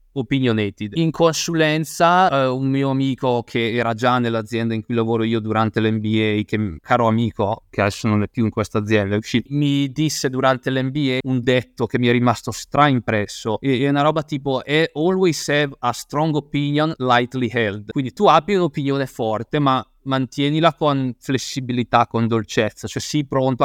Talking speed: 170 wpm